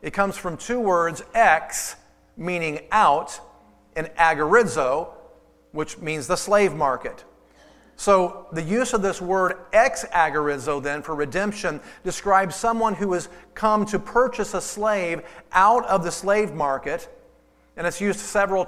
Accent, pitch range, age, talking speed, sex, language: American, 160-205 Hz, 40-59, 140 wpm, male, English